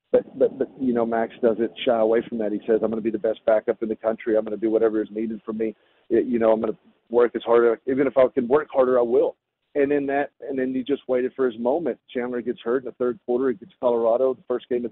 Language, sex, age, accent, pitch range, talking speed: English, male, 40-59, American, 115-150 Hz, 300 wpm